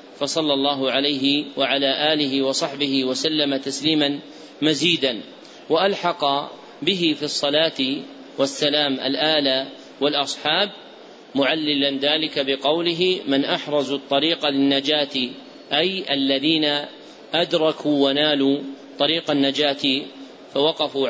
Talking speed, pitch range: 85 wpm, 140-160 Hz